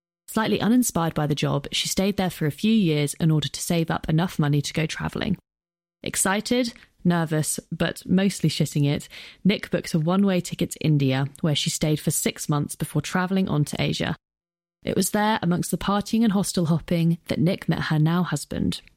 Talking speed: 190 wpm